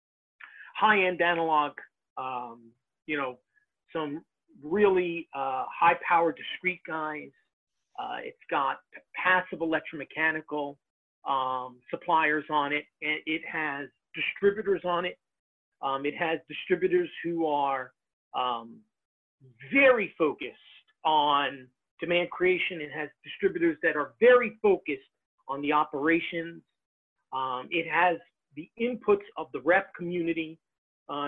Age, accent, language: 40-59, American, English